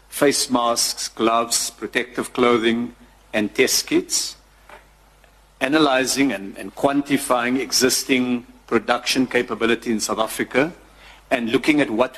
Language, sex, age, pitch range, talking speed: English, male, 50-69, 115-135 Hz, 110 wpm